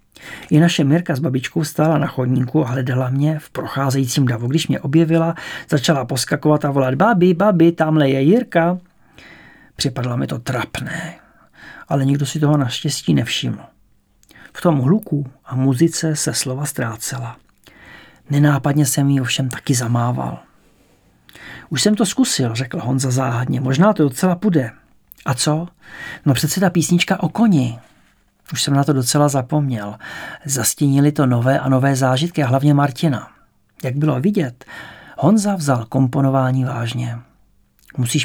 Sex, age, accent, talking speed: male, 50-69, Czech, 145 wpm